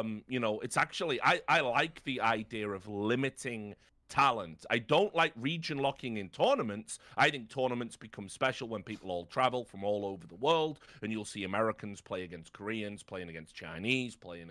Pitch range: 100-125 Hz